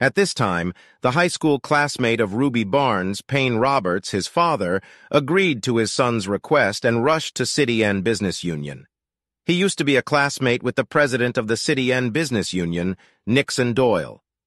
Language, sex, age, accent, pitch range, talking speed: English, male, 50-69, American, 110-140 Hz, 180 wpm